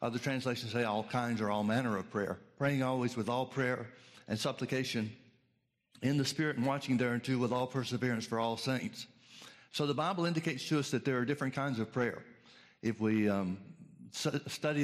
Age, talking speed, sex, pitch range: 60-79, 185 wpm, male, 120-145 Hz